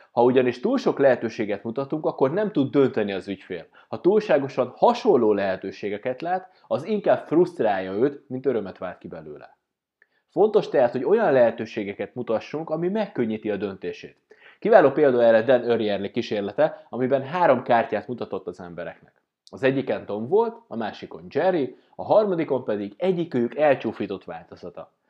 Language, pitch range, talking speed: Hungarian, 110-185 Hz, 145 wpm